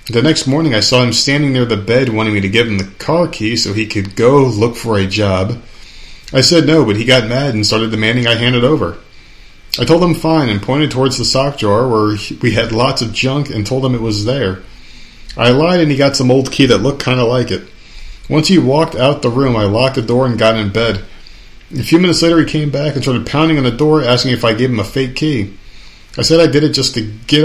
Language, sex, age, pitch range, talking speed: English, male, 30-49, 105-135 Hz, 260 wpm